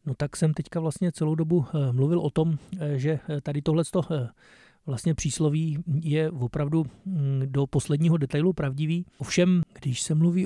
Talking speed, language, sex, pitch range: 145 wpm, Czech, male, 140-160 Hz